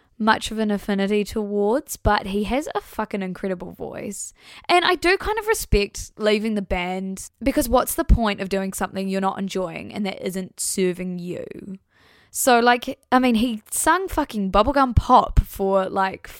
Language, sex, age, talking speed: English, female, 10-29, 170 wpm